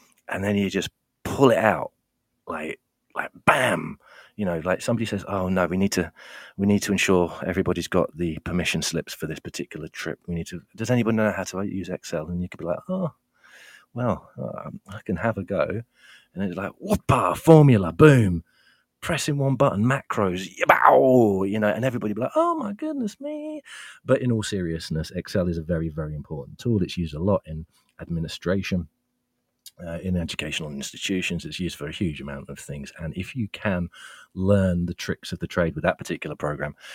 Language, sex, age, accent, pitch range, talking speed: English, male, 30-49, British, 85-110 Hz, 190 wpm